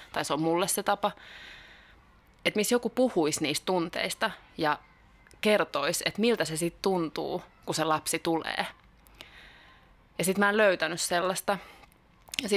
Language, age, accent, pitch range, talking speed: Finnish, 20-39, native, 165-185 Hz, 145 wpm